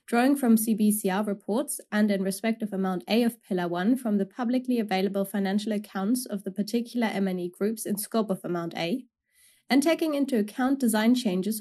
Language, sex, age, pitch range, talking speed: English, female, 20-39, 190-245 Hz, 185 wpm